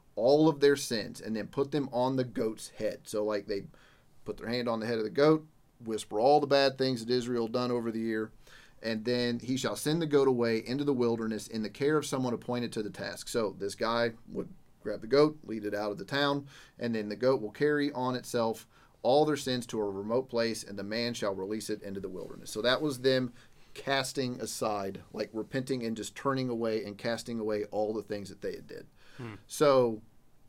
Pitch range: 110-135 Hz